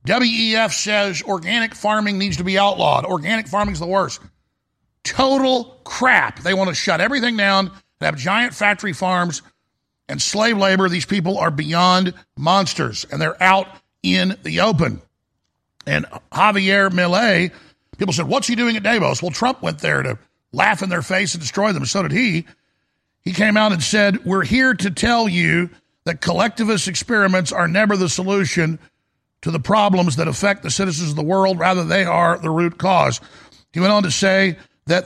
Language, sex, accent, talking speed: English, male, American, 180 wpm